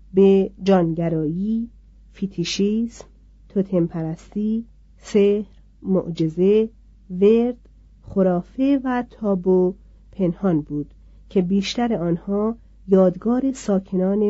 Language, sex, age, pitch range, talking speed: Persian, female, 40-59, 170-215 Hz, 70 wpm